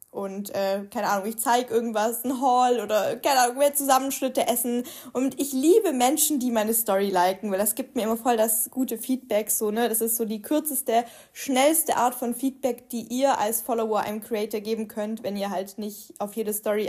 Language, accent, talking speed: German, German, 205 wpm